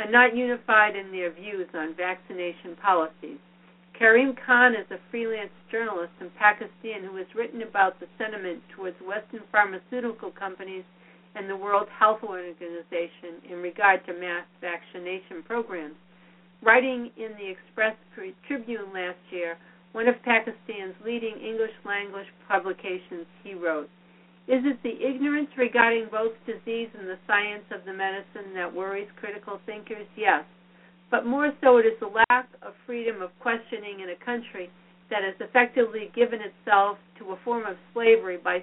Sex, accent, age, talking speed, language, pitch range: female, American, 60-79, 150 wpm, English, 180-230 Hz